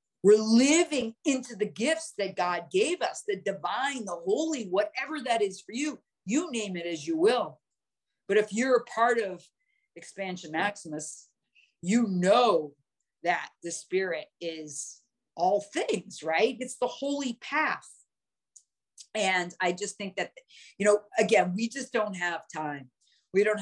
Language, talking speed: English, 150 wpm